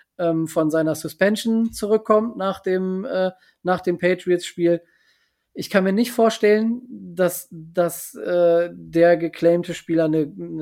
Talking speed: 130 wpm